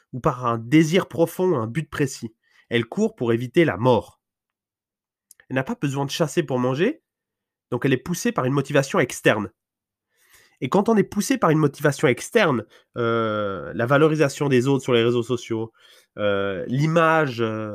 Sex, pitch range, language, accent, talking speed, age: male, 110-145 Hz, French, French, 170 wpm, 20-39